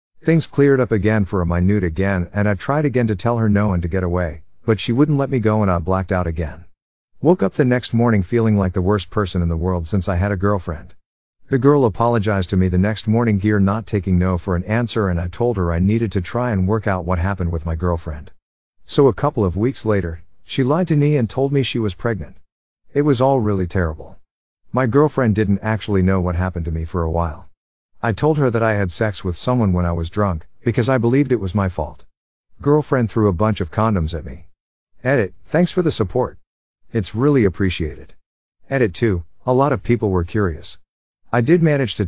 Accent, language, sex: American, English, male